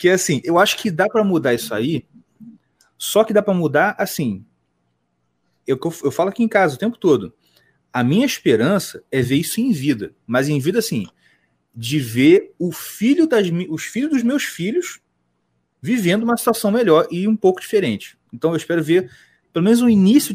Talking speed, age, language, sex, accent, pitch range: 190 wpm, 30-49, Portuguese, male, Brazilian, 140-210 Hz